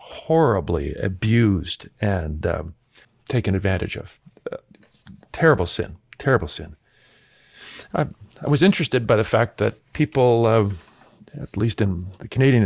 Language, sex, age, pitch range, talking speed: English, male, 50-69, 95-125 Hz, 130 wpm